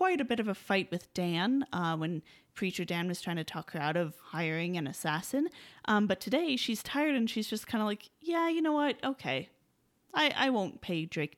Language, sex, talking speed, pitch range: English, female, 225 wpm, 175-230 Hz